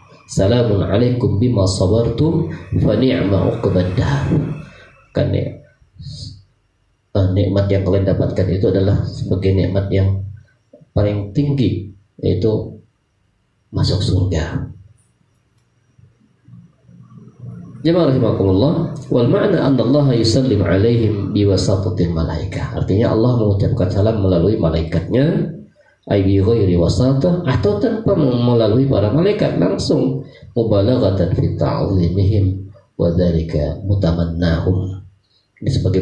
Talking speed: 70 wpm